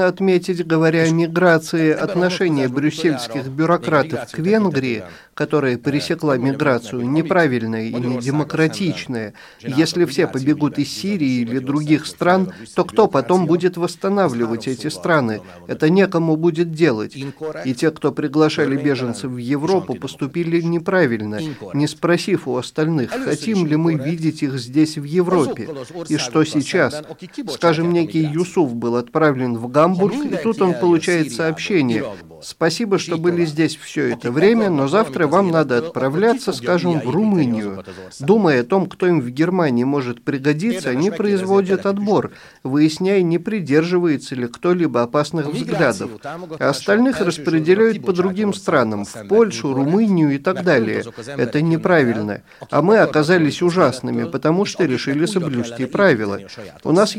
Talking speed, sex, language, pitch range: 135 wpm, male, Russian, 140-180 Hz